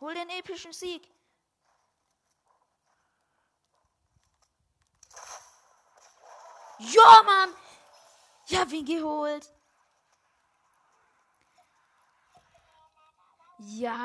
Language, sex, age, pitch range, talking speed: German, female, 20-39, 190-245 Hz, 45 wpm